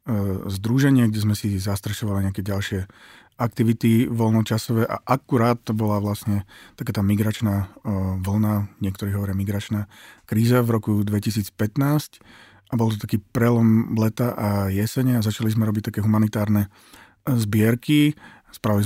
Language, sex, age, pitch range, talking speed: Slovak, male, 40-59, 105-120 Hz, 130 wpm